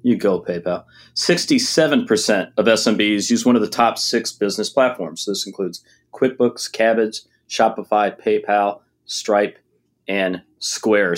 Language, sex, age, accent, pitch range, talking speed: English, male, 30-49, American, 105-135 Hz, 135 wpm